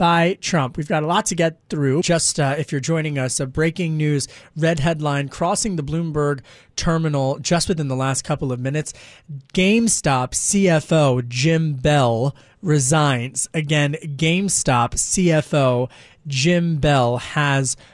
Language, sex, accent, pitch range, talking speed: English, male, American, 140-175 Hz, 140 wpm